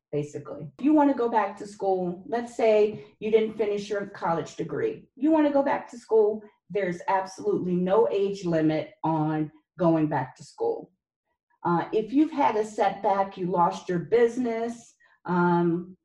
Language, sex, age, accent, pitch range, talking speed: English, female, 40-59, American, 165-215 Hz, 165 wpm